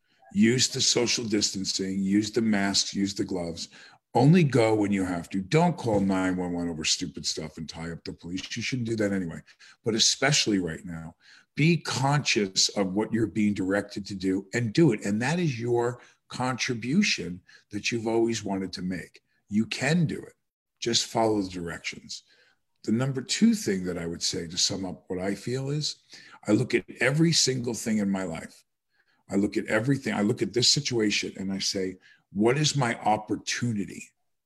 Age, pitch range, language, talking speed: 50-69, 95-120 Hz, English, 185 wpm